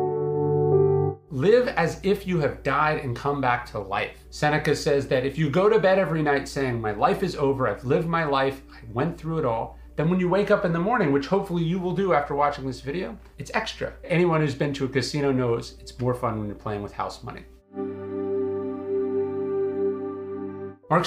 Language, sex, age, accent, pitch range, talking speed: English, male, 30-49, American, 125-165 Hz, 200 wpm